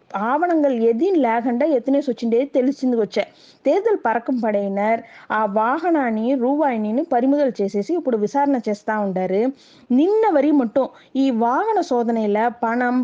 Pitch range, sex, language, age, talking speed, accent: 215-280 Hz, female, Tamil, 20-39, 70 wpm, native